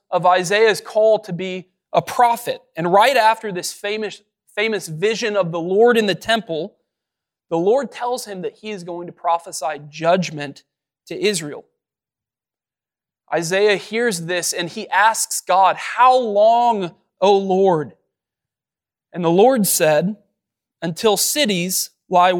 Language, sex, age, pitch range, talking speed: English, male, 20-39, 165-210 Hz, 135 wpm